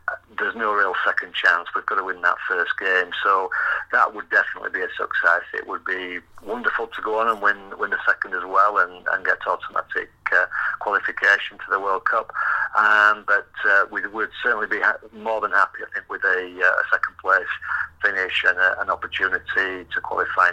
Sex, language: male, English